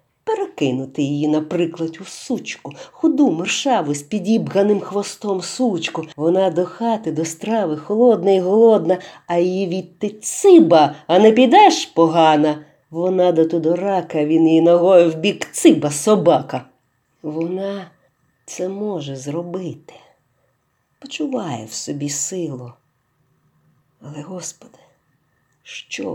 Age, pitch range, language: 50-69, 150-190 Hz, Ukrainian